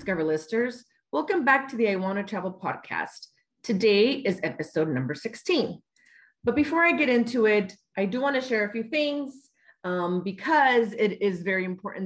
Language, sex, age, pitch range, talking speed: English, female, 30-49, 175-235 Hz, 180 wpm